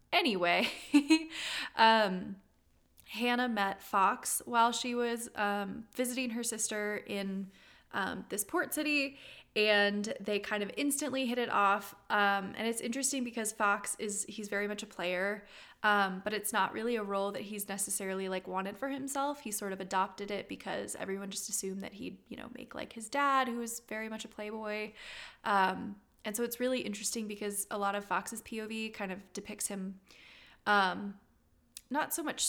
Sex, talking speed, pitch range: female, 170 wpm, 200-235 Hz